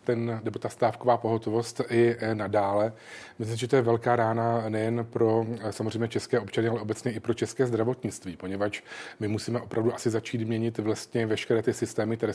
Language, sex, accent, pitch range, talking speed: Czech, male, native, 110-120 Hz, 175 wpm